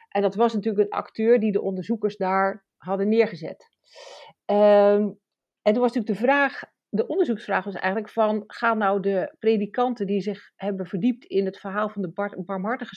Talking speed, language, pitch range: 165 wpm, Dutch, 200-255 Hz